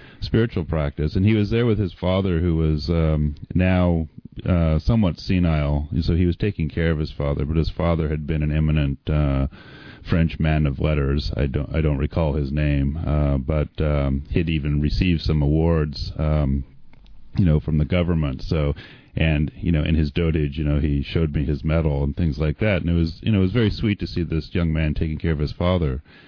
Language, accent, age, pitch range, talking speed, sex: English, American, 30-49, 75-90 Hz, 215 wpm, male